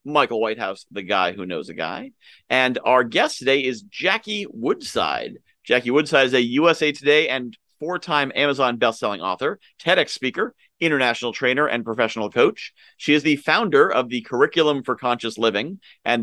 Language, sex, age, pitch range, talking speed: English, male, 30-49, 125-165 Hz, 165 wpm